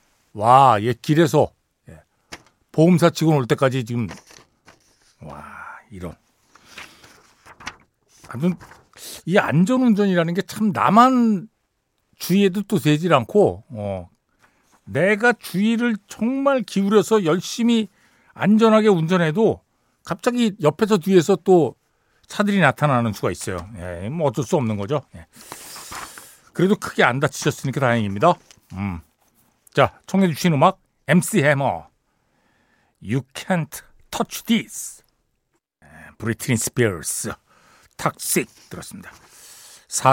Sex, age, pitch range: male, 60-79, 125-200 Hz